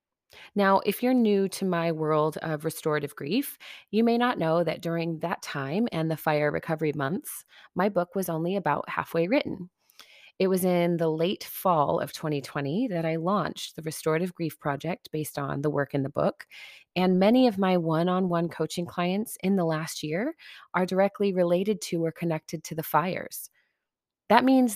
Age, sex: 30-49, female